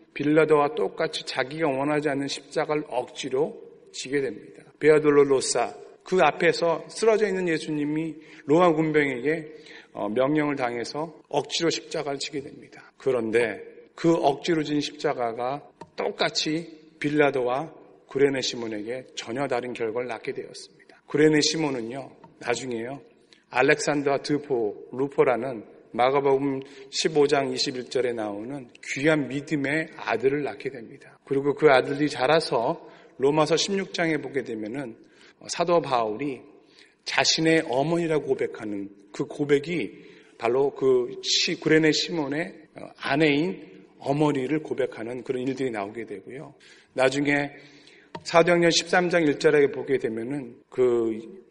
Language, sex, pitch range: Korean, male, 140-170 Hz